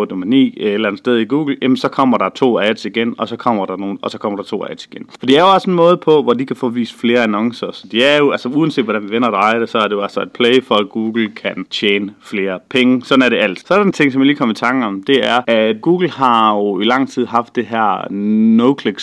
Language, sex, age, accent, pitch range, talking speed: Danish, male, 30-49, native, 105-135 Hz, 300 wpm